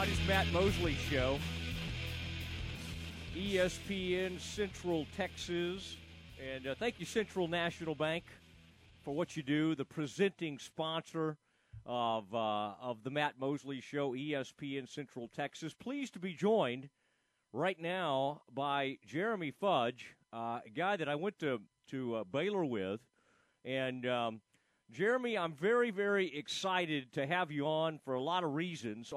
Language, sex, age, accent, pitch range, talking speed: English, male, 40-59, American, 130-185 Hz, 135 wpm